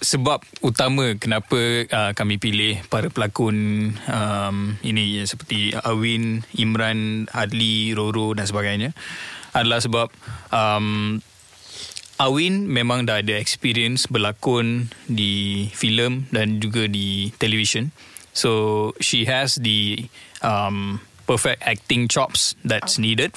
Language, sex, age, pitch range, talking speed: Malay, male, 20-39, 105-125 Hz, 110 wpm